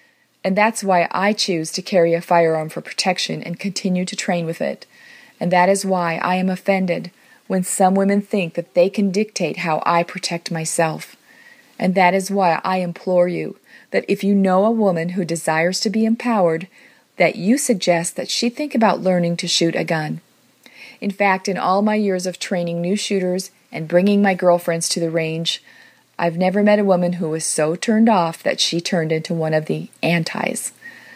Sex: female